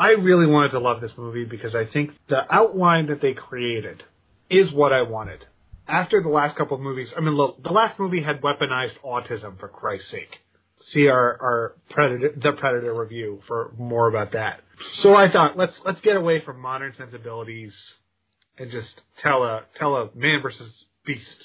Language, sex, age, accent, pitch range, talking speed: English, male, 30-49, American, 115-155 Hz, 185 wpm